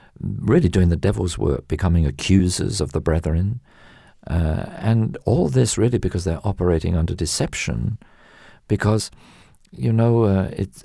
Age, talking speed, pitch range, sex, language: 50-69, 140 wpm, 80-110 Hz, male, English